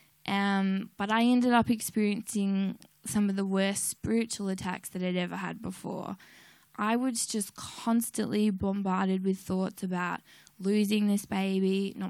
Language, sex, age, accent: English, female, 10-29, Australian